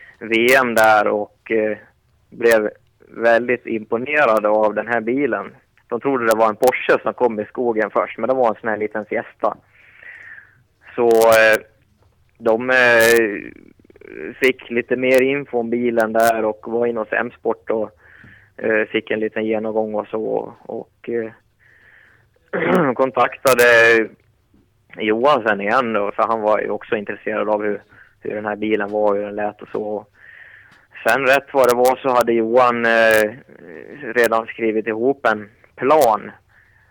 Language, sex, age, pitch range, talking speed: Swedish, male, 20-39, 105-120 Hz, 155 wpm